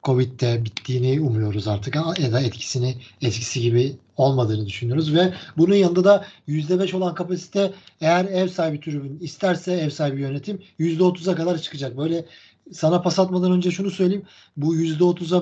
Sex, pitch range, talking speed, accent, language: male, 145-185 Hz, 150 wpm, native, Turkish